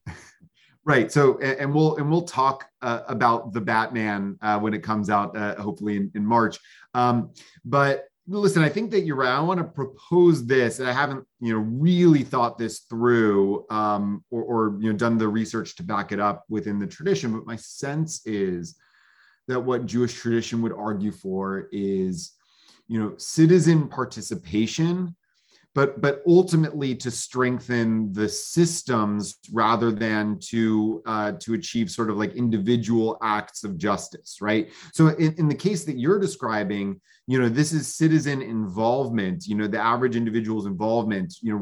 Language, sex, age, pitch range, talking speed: English, male, 30-49, 110-140 Hz, 170 wpm